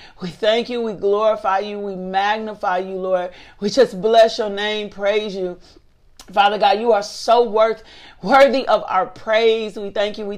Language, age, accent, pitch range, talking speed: English, 40-59, American, 185-210 Hz, 180 wpm